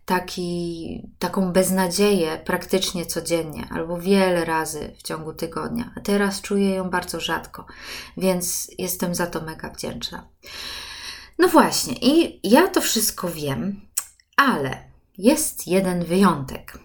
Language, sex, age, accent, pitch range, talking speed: Polish, female, 20-39, native, 170-215 Hz, 120 wpm